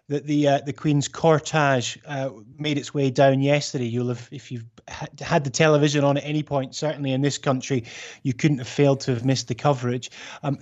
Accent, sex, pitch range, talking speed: British, male, 130-155 Hz, 210 wpm